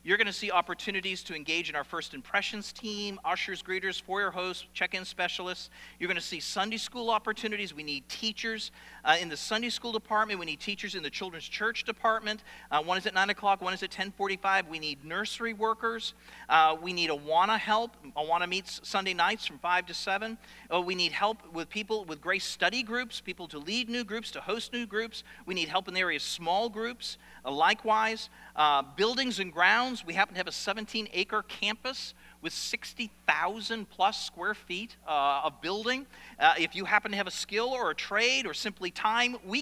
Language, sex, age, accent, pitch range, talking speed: English, male, 40-59, American, 170-225 Hz, 205 wpm